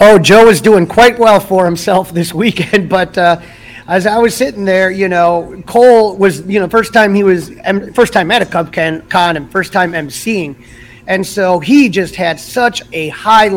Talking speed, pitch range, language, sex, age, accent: 200 wpm, 160-190 Hz, English, male, 30-49, American